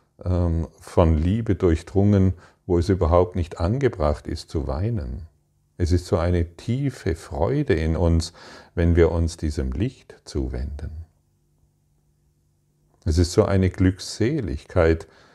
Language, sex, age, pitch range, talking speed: German, male, 40-59, 80-100 Hz, 115 wpm